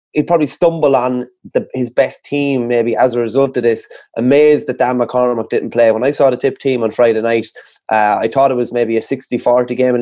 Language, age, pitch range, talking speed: English, 20-39, 115-130 Hz, 235 wpm